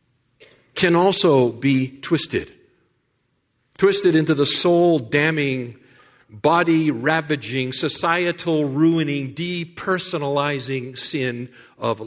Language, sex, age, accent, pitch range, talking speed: English, male, 50-69, American, 125-170 Hz, 65 wpm